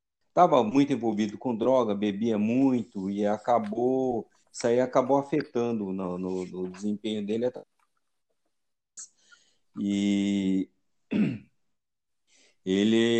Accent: Brazilian